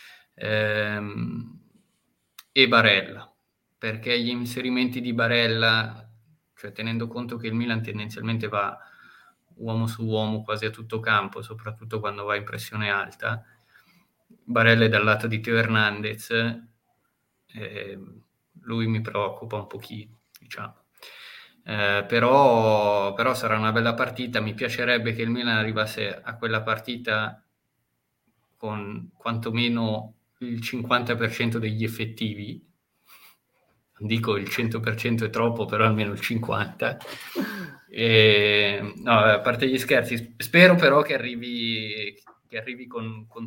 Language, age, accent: Italian, 20-39, native